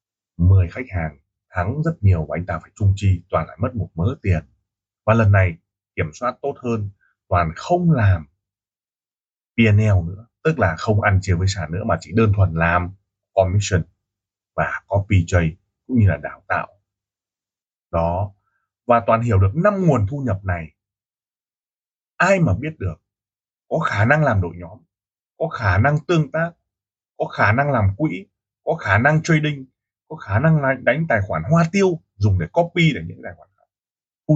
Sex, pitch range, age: male, 95-115 Hz, 20-39